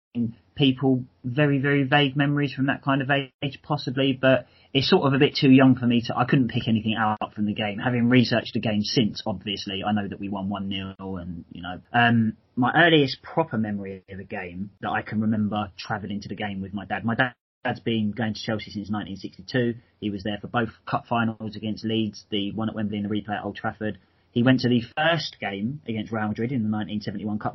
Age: 30-49